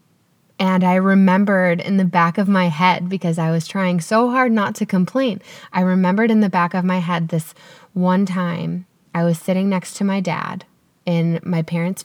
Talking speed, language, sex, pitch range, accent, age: 195 wpm, English, female, 170-195 Hz, American, 10-29